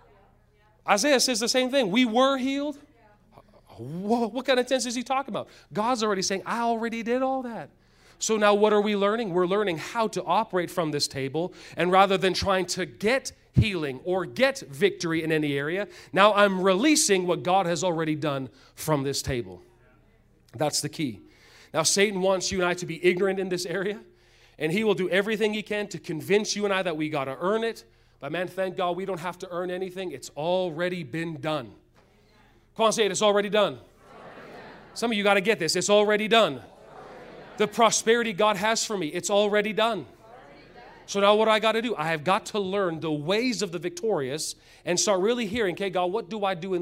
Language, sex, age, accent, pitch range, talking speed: English, male, 40-59, American, 165-215 Hz, 210 wpm